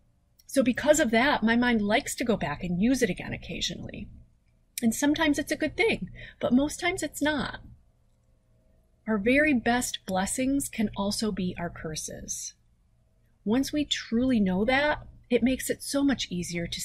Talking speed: 165 wpm